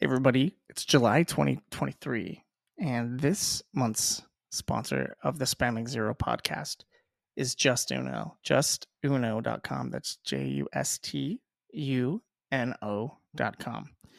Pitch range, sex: 120-145 Hz, male